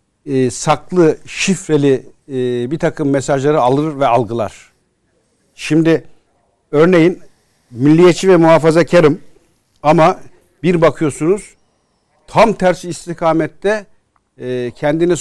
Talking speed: 90 wpm